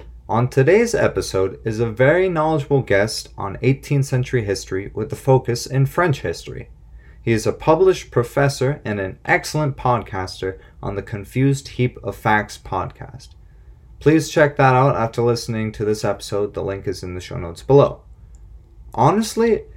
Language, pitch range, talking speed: English, 100-135 Hz, 160 wpm